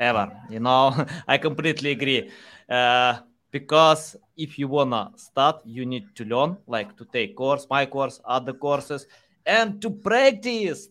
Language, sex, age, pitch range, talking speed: English, male, 20-39, 130-175 Hz, 155 wpm